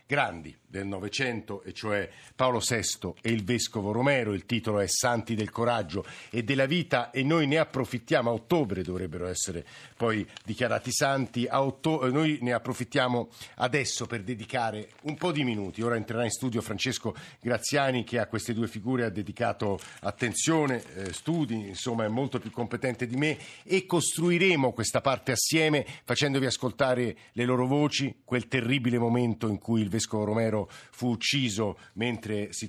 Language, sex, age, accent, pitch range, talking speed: Italian, male, 50-69, native, 110-135 Hz, 155 wpm